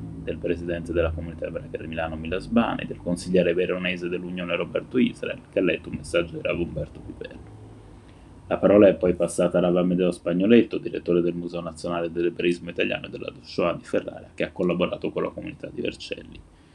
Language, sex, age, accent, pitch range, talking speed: Italian, male, 20-39, native, 85-95 Hz, 185 wpm